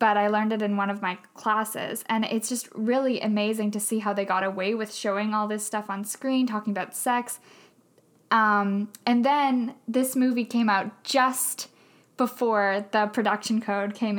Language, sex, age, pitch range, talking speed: English, female, 10-29, 210-240 Hz, 180 wpm